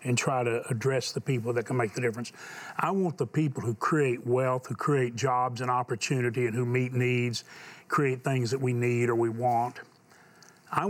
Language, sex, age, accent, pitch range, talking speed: English, male, 40-59, American, 120-140 Hz, 200 wpm